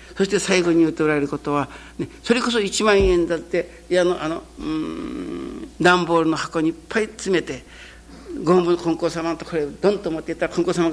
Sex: male